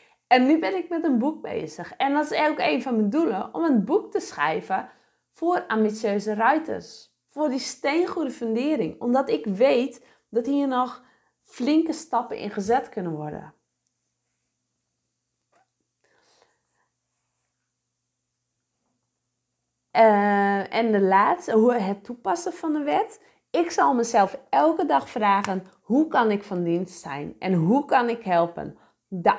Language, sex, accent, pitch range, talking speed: English, female, Dutch, 180-265 Hz, 140 wpm